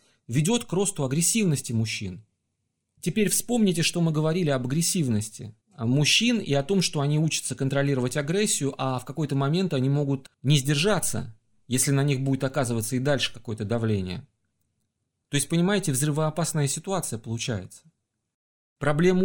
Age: 30-49